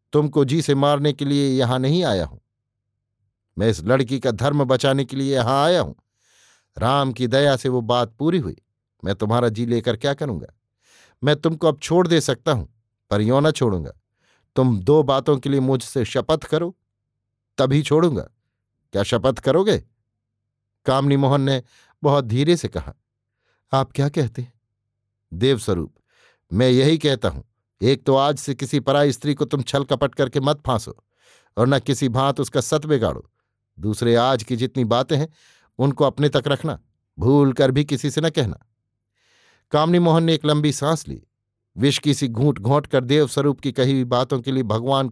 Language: Hindi